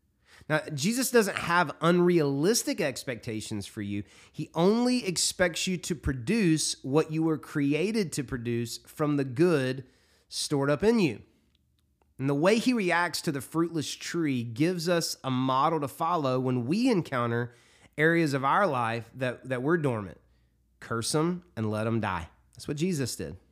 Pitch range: 120-165 Hz